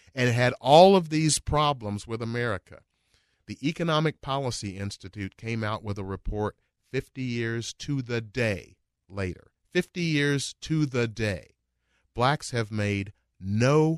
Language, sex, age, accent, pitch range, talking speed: English, male, 40-59, American, 100-150 Hz, 135 wpm